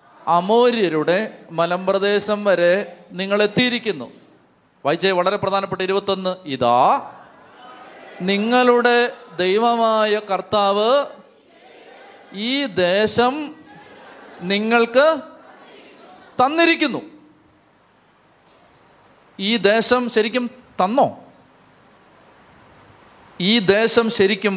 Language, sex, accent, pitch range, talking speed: Malayalam, male, native, 195-250 Hz, 55 wpm